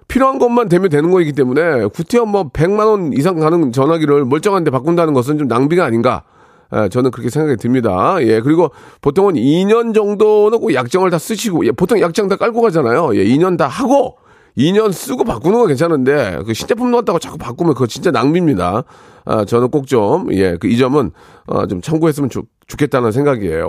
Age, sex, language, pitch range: 40-59, male, Korean, 120-190 Hz